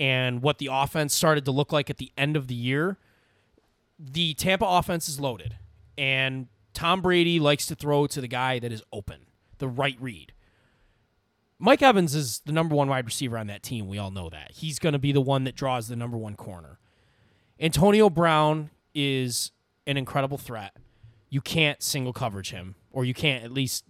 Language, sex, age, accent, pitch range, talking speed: English, male, 20-39, American, 120-155 Hz, 195 wpm